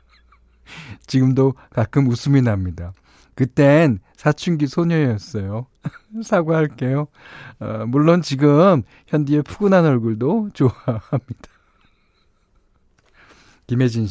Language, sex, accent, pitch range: Korean, male, native, 105-165 Hz